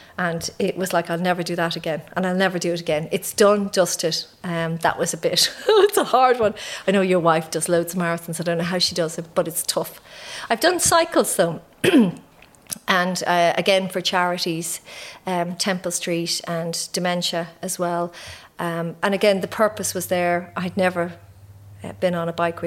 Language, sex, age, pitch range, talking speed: English, female, 40-59, 170-200 Hz, 200 wpm